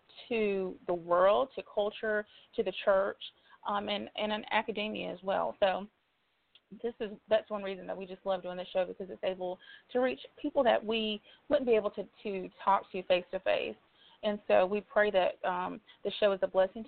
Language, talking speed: English, 195 wpm